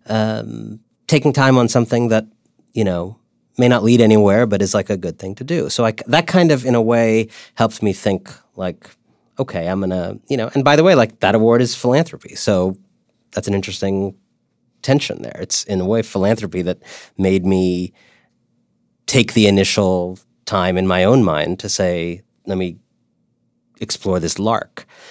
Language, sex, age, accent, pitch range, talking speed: English, male, 30-49, American, 90-120 Hz, 180 wpm